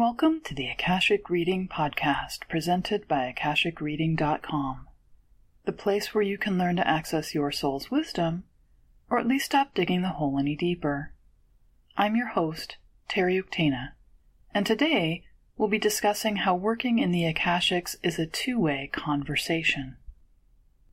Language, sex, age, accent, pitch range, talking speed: English, female, 30-49, American, 160-240 Hz, 140 wpm